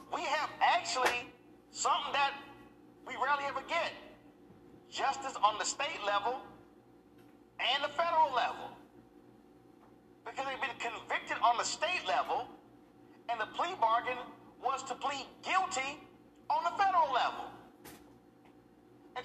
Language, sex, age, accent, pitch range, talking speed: English, male, 40-59, American, 220-280 Hz, 120 wpm